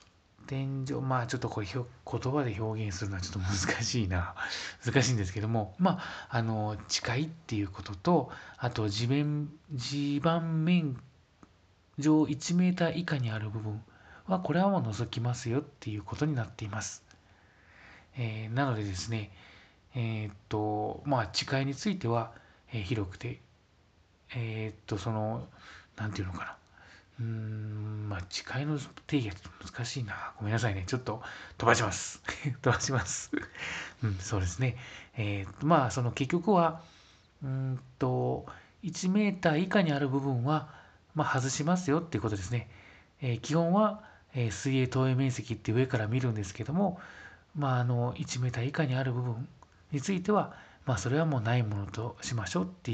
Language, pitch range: Japanese, 105-140 Hz